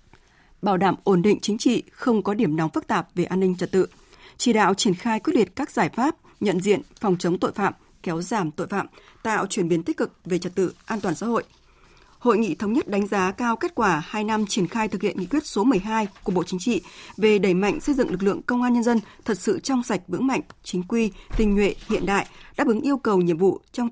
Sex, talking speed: female, 255 wpm